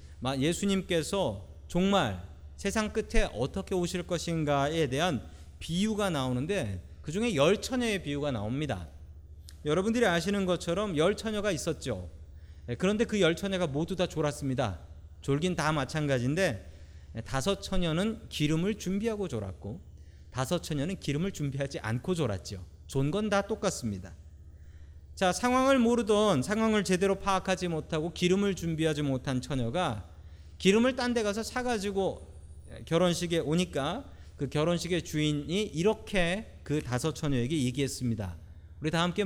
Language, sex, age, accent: Korean, male, 40-59, native